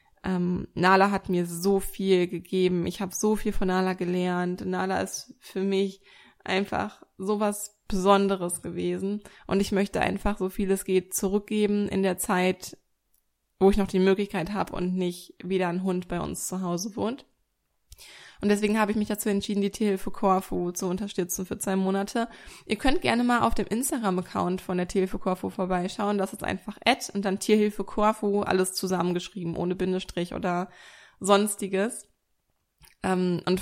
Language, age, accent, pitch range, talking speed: German, 20-39, German, 185-205 Hz, 165 wpm